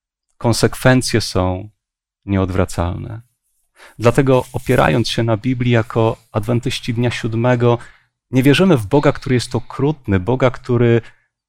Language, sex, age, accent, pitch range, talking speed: Polish, male, 40-59, native, 105-135 Hz, 110 wpm